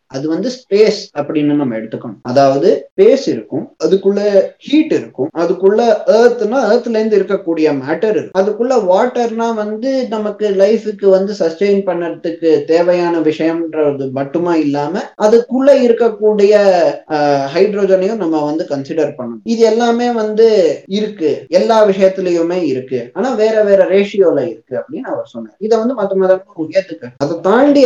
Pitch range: 160-220 Hz